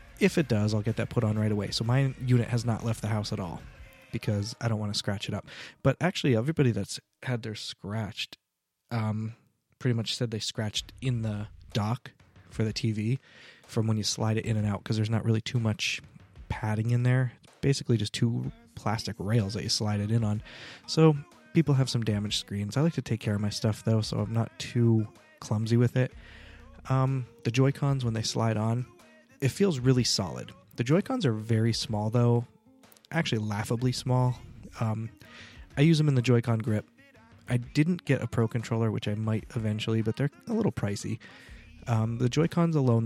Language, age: English, 20-39